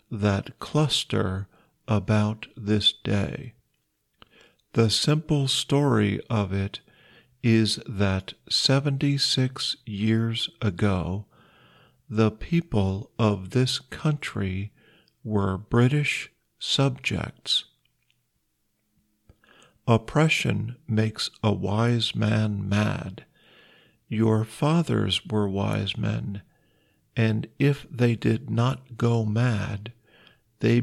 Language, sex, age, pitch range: Thai, male, 50-69, 105-130 Hz